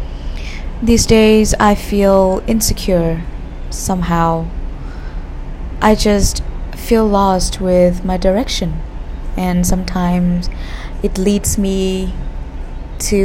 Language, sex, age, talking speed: Vietnamese, female, 20-39, 85 wpm